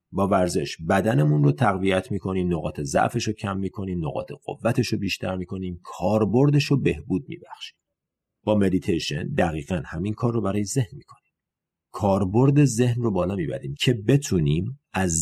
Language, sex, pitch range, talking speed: Persian, male, 100-155 Hz, 140 wpm